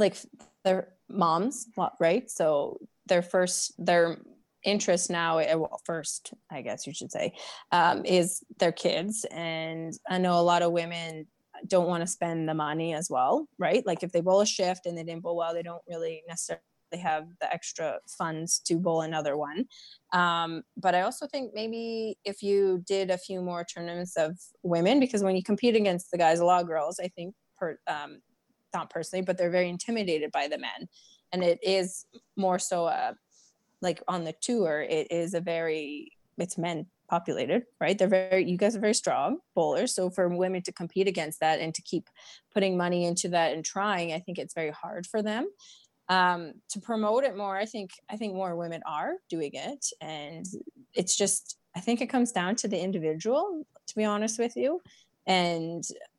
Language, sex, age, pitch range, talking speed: English, female, 20-39, 170-210 Hz, 190 wpm